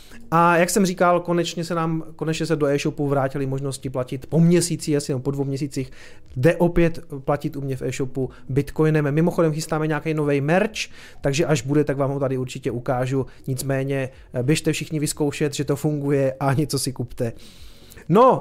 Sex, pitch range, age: male, 140-175 Hz, 30-49